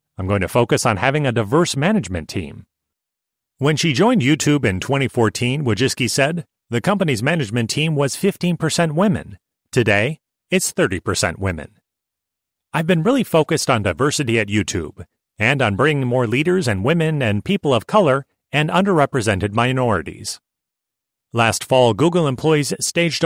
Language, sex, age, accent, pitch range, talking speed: English, male, 40-59, American, 110-155 Hz, 145 wpm